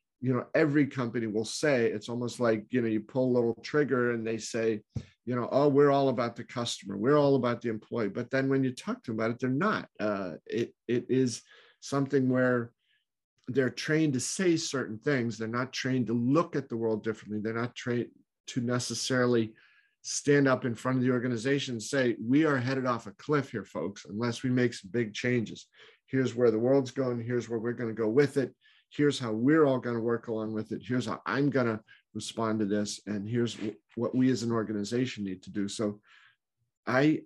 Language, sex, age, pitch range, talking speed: English, male, 50-69, 115-135 Hz, 215 wpm